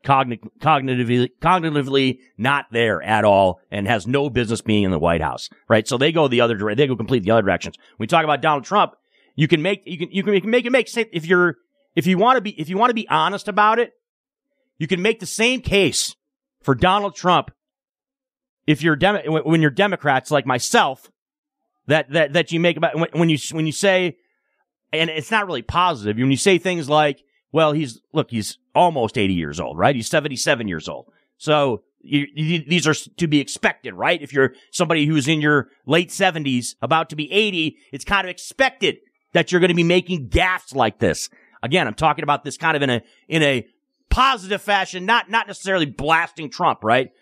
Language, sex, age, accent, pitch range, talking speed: English, male, 40-59, American, 140-190 Hz, 205 wpm